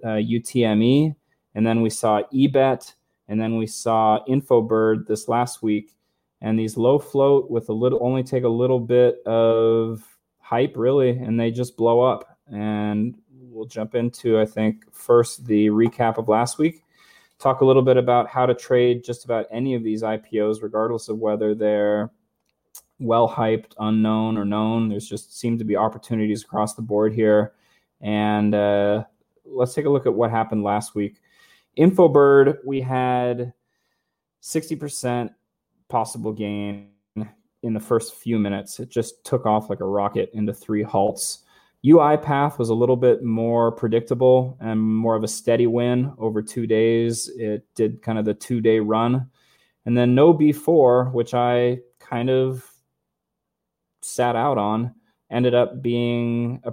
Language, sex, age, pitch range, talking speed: English, male, 20-39, 110-125 Hz, 160 wpm